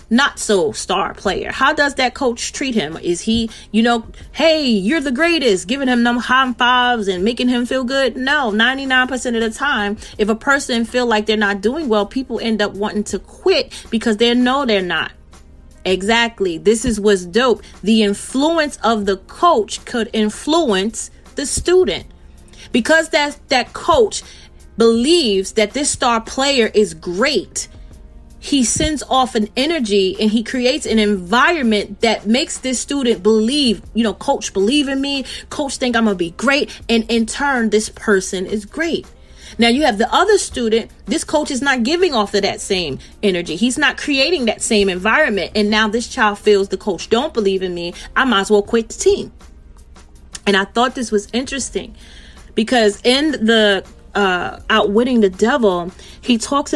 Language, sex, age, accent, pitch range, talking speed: English, female, 30-49, American, 205-265 Hz, 180 wpm